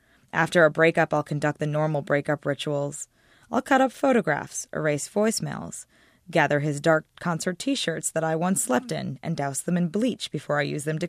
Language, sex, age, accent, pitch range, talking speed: English, female, 20-39, American, 150-190 Hz, 190 wpm